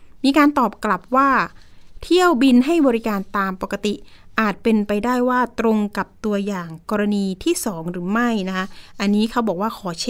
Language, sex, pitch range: Thai, female, 200-255 Hz